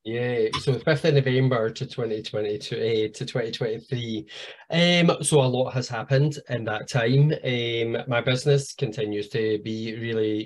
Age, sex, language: 20-39, male, English